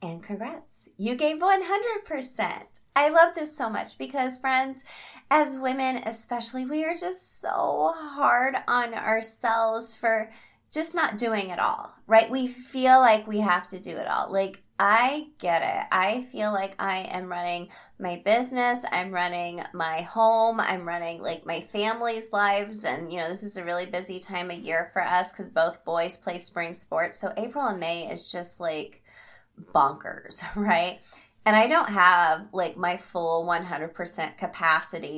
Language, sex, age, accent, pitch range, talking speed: English, female, 20-39, American, 175-245 Hz, 165 wpm